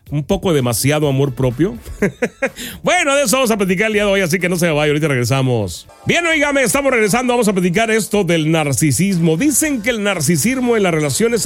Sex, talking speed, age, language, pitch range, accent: male, 205 wpm, 40-59, Spanish, 145-220 Hz, Mexican